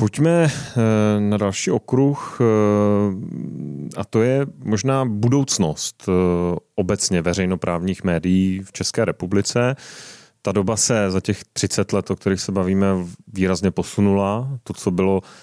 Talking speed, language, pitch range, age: 120 wpm, Czech, 95-115 Hz, 30-49